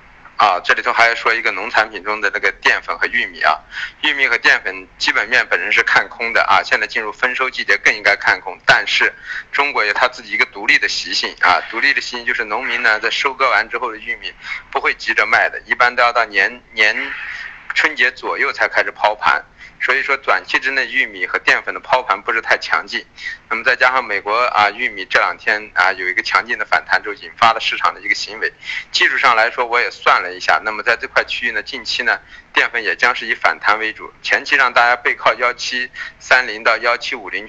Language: Chinese